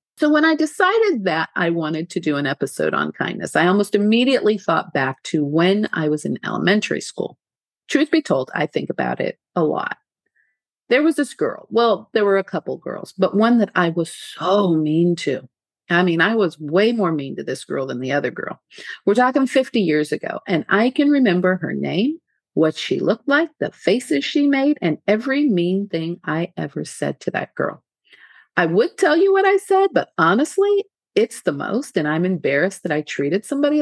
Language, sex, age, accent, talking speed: English, female, 50-69, American, 200 wpm